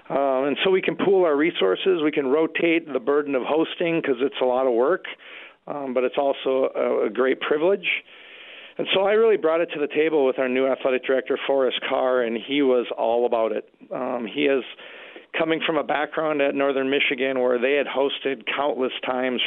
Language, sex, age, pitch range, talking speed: English, male, 40-59, 120-140 Hz, 205 wpm